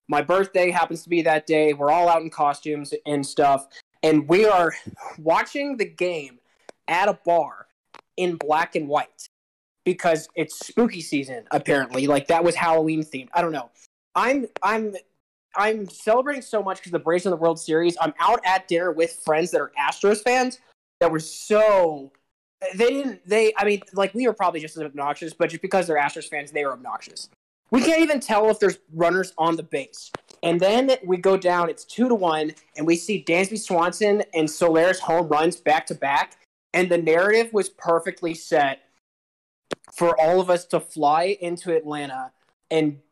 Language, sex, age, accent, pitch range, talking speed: English, male, 20-39, American, 155-190 Hz, 185 wpm